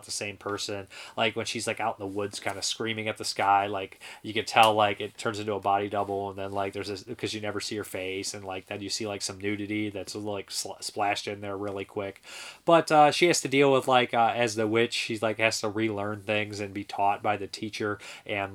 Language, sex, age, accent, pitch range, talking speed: English, male, 30-49, American, 100-120 Hz, 255 wpm